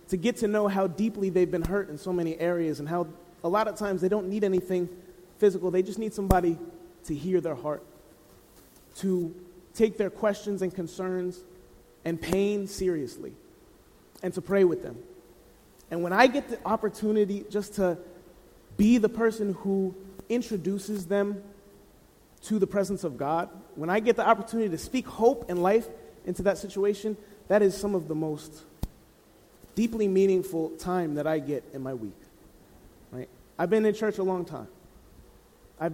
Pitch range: 165-205 Hz